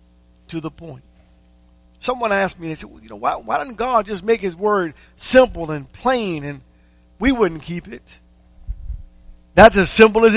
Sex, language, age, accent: male, English, 50-69, American